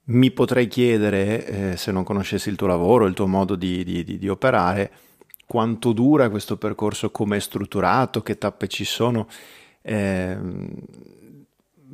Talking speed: 140 wpm